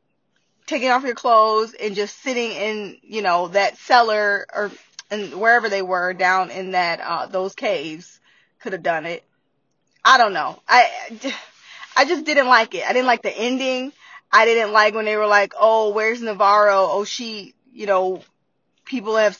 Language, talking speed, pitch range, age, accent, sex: English, 175 wpm, 200-275 Hz, 20-39, American, female